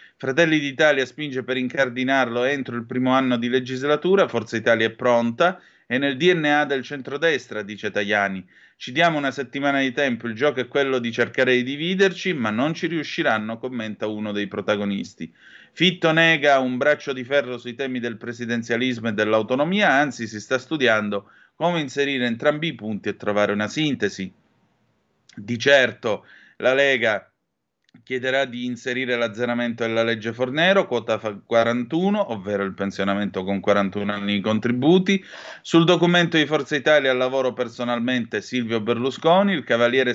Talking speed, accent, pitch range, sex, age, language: 150 wpm, native, 110-145 Hz, male, 30-49, Italian